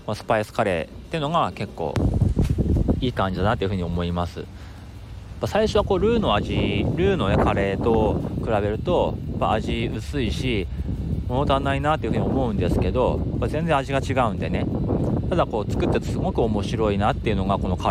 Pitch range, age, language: 90-115 Hz, 30-49, Japanese